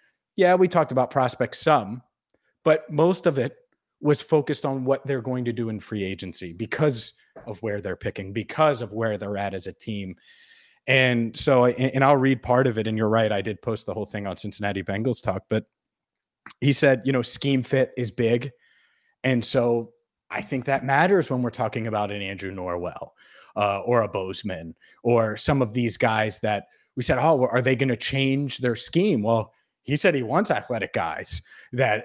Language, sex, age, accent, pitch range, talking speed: English, male, 30-49, American, 105-130 Hz, 195 wpm